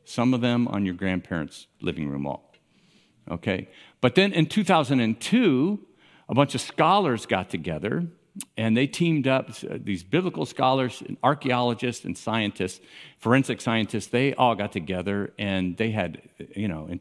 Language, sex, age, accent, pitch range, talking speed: English, male, 50-69, American, 100-140 Hz, 155 wpm